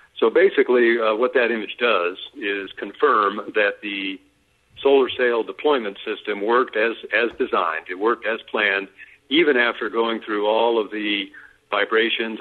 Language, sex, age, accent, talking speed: English, male, 60-79, American, 150 wpm